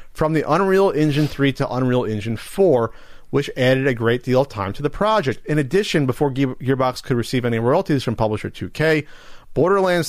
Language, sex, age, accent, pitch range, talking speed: English, male, 40-59, American, 110-150 Hz, 185 wpm